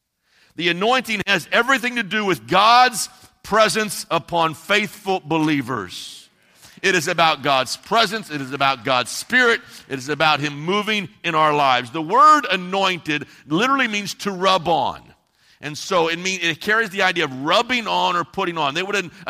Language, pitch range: English, 150-195 Hz